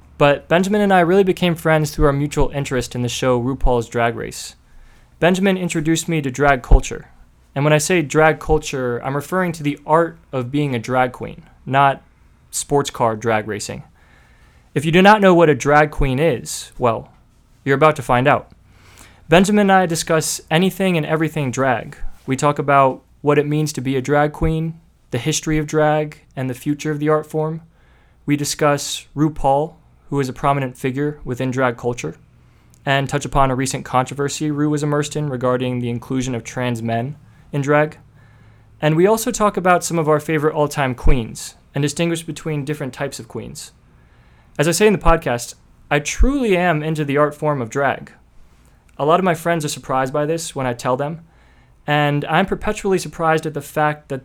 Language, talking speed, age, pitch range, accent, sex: English, 190 wpm, 20-39, 130-160 Hz, American, male